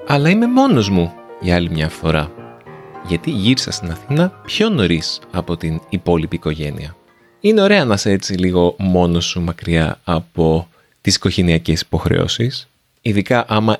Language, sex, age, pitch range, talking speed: Greek, male, 30-49, 85-135 Hz, 140 wpm